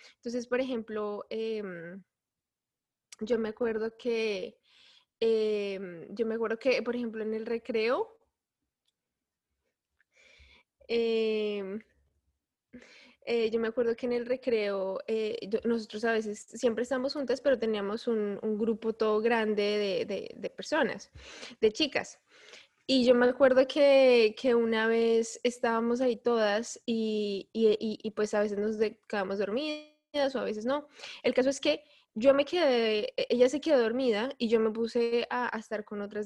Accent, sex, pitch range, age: Colombian, female, 215-260 Hz, 20-39